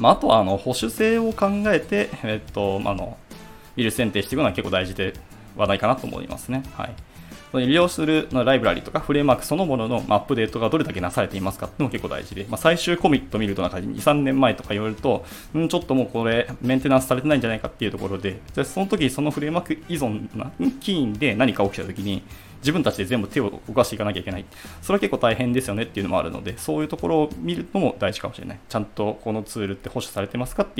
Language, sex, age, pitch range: Japanese, male, 20-39, 100-145 Hz